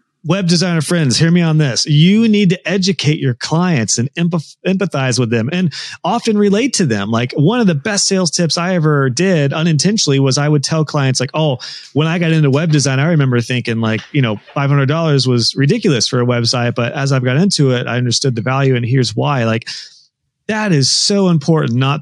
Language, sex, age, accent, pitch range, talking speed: English, male, 30-49, American, 125-165 Hz, 210 wpm